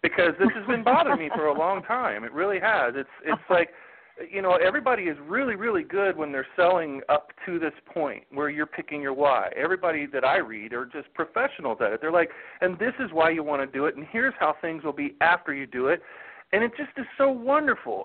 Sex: male